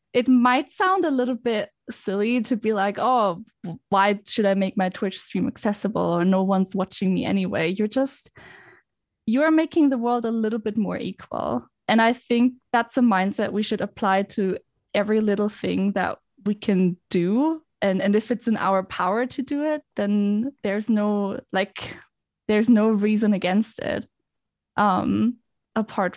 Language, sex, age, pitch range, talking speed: English, female, 10-29, 200-250 Hz, 170 wpm